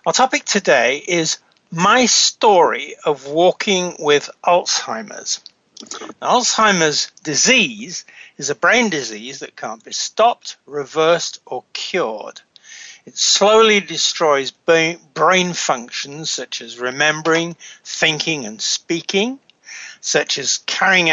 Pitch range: 150-200 Hz